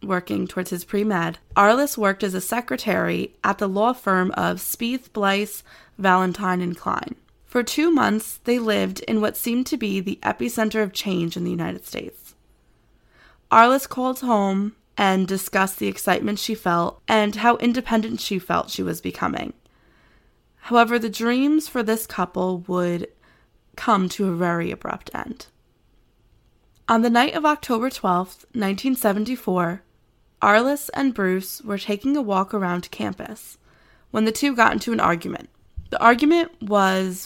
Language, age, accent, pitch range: English, 20-39, American, 185-240 Hz